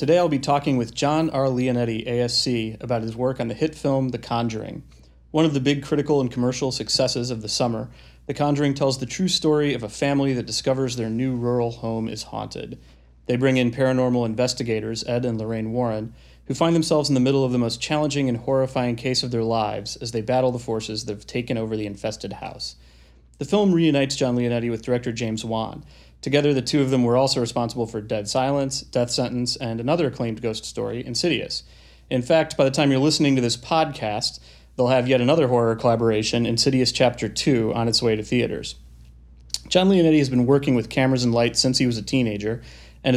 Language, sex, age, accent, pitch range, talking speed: English, male, 30-49, American, 115-135 Hz, 210 wpm